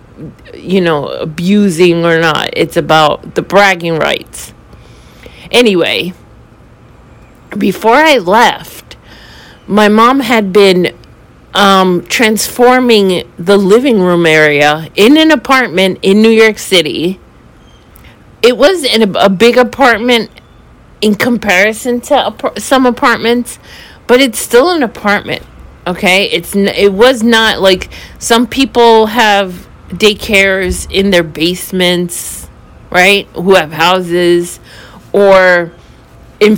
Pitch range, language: 180-230 Hz, English